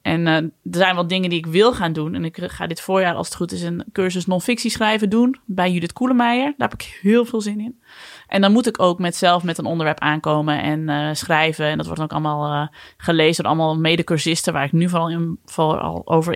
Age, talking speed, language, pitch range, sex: 20-39, 240 wpm, Dutch, 160-220 Hz, female